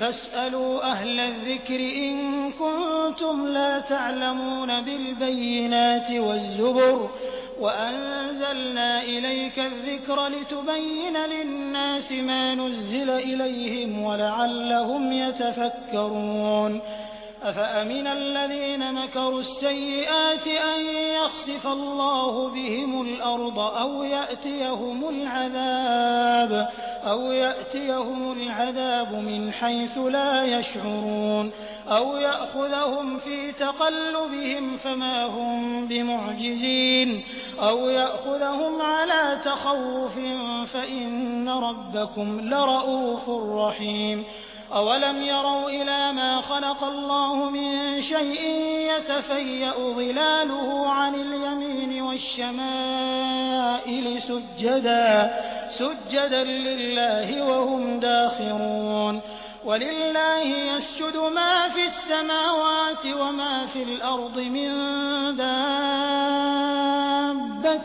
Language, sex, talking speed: Hindi, male, 75 wpm